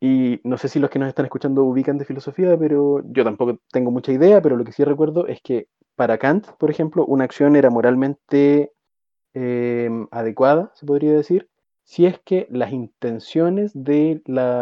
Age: 30-49